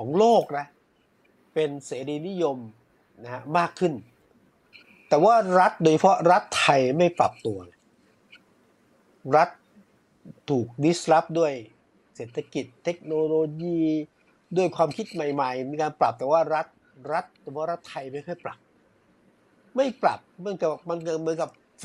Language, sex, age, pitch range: Thai, male, 60-79, 140-175 Hz